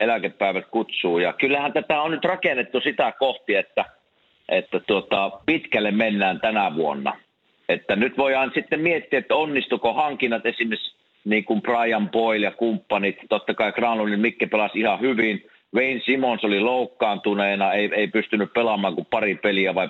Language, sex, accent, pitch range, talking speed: Finnish, male, native, 105-130 Hz, 150 wpm